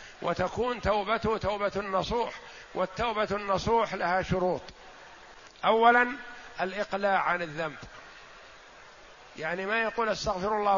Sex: male